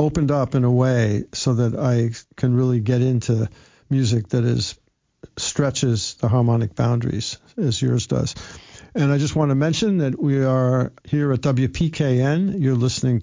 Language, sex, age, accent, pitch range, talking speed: English, male, 50-69, American, 120-140 Hz, 165 wpm